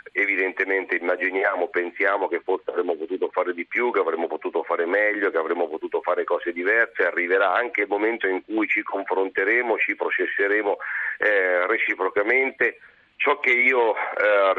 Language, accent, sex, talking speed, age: Italian, native, male, 150 wpm, 40-59